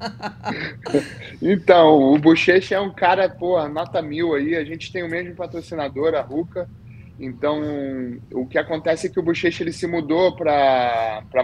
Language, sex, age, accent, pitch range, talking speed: Portuguese, male, 20-39, Brazilian, 130-165 Hz, 165 wpm